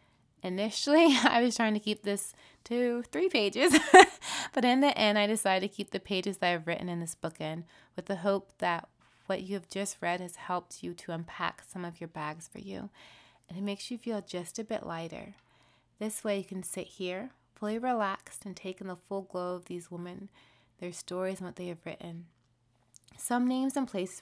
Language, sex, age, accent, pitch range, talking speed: English, female, 20-39, American, 175-210 Hz, 210 wpm